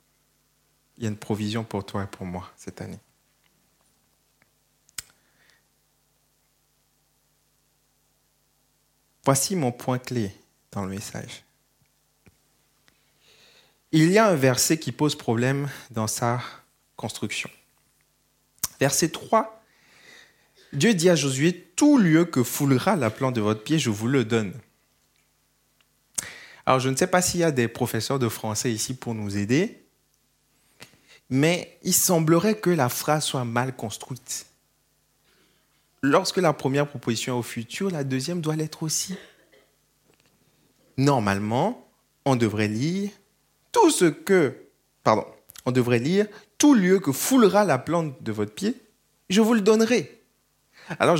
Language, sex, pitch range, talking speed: French, male, 120-175 Hz, 130 wpm